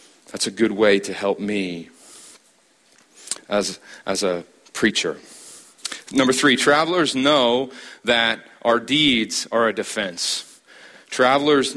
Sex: male